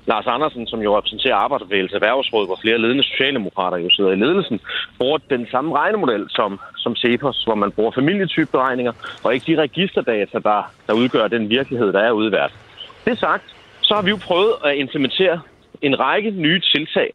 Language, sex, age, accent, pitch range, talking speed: Danish, male, 30-49, native, 125-185 Hz, 180 wpm